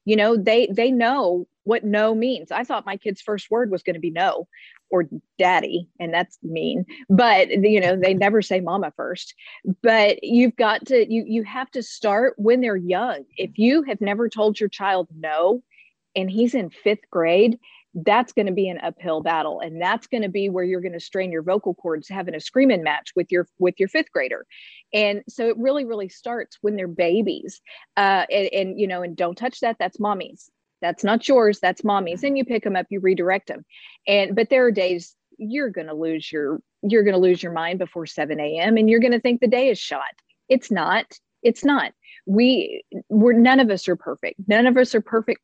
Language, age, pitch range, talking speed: English, 40-59, 185-240 Hz, 215 wpm